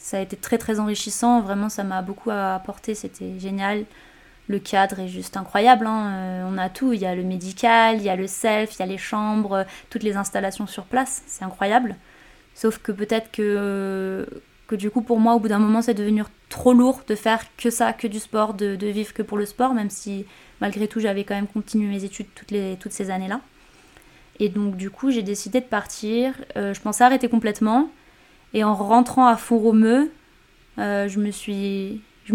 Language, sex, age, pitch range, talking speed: French, female, 20-39, 195-225 Hz, 210 wpm